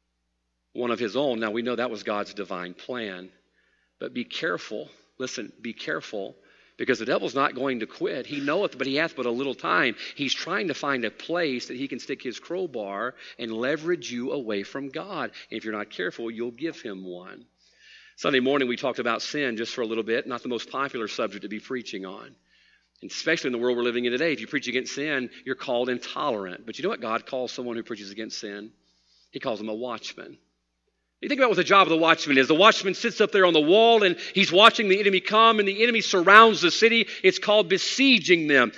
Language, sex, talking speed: English, male, 225 wpm